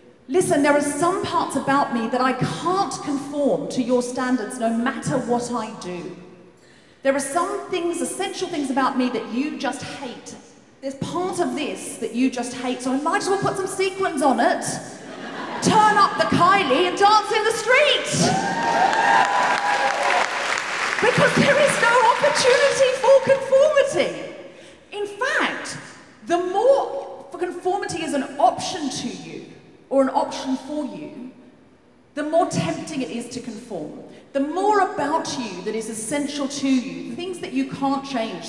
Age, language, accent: 40-59, English, British